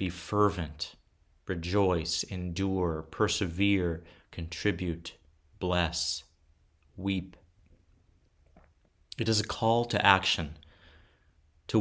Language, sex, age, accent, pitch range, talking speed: English, male, 30-49, American, 80-100 Hz, 75 wpm